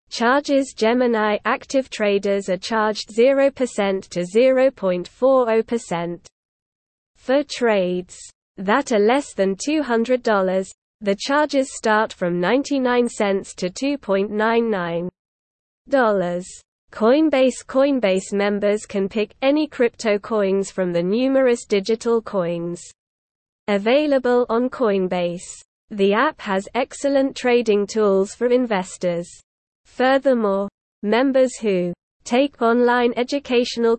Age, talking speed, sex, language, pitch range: 20-39, 95 wpm, female, English, 195-250 Hz